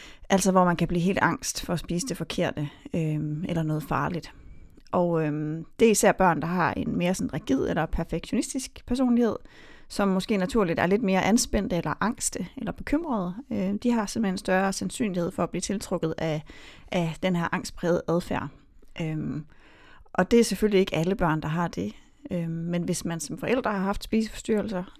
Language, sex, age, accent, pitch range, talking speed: Danish, female, 30-49, native, 165-215 Hz, 175 wpm